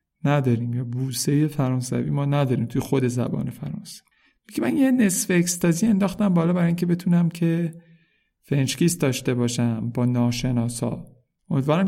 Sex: male